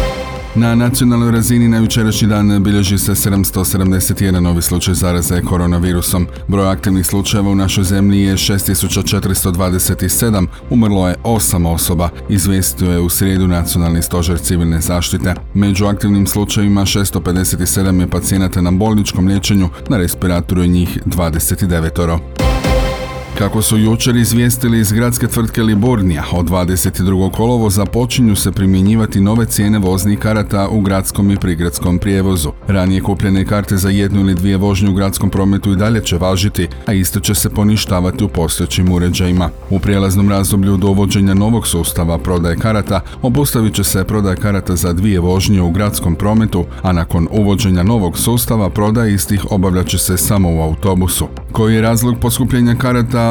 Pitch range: 90-105 Hz